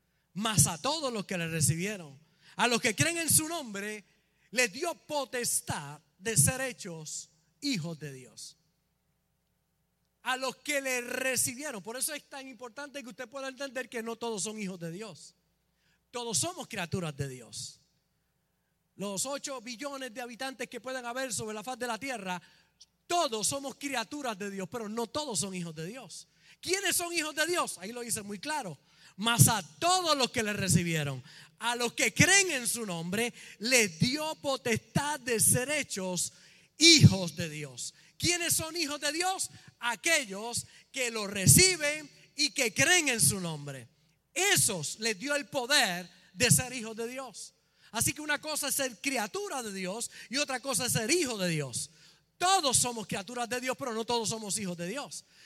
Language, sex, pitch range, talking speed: Spanish, male, 175-270 Hz, 175 wpm